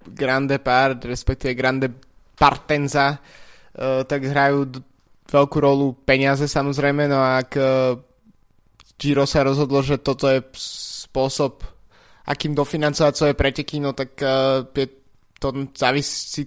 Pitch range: 130-145 Hz